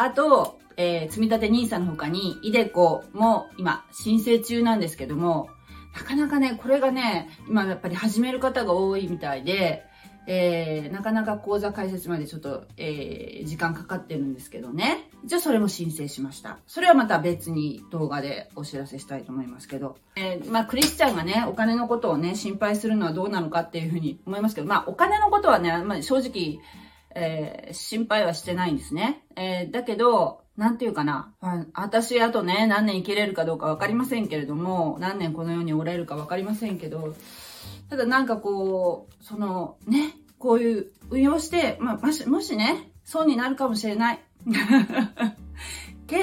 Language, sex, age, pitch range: Japanese, female, 30-49, 165-235 Hz